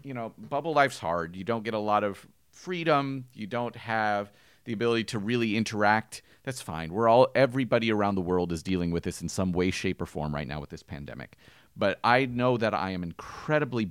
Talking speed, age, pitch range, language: 215 wpm, 30-49, 95-115 Hz, English